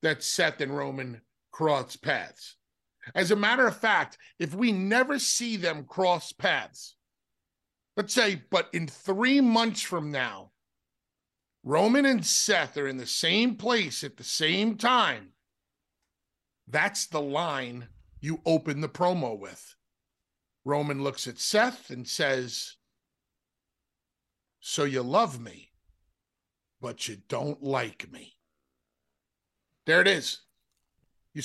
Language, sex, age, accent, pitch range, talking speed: English, male, 50-69, American, 135-205 Hz, 125 wpm